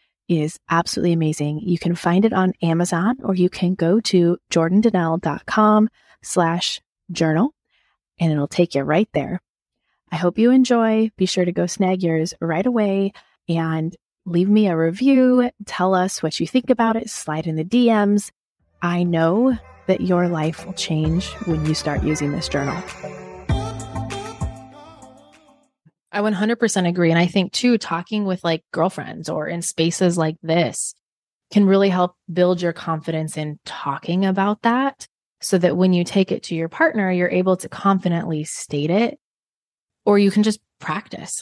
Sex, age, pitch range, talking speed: female, 20-39, 165-200 Hz, 160 wpm